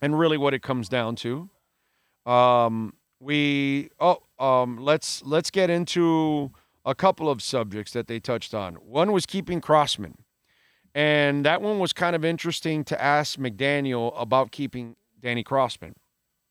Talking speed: 150 wpm